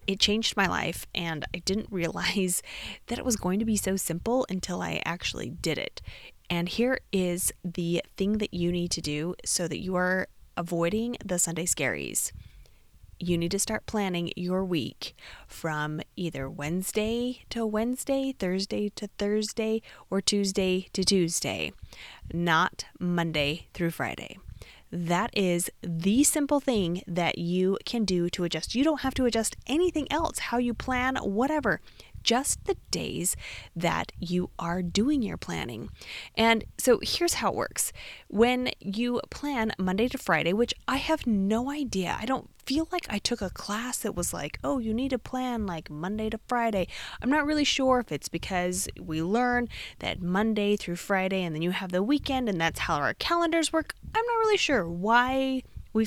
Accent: American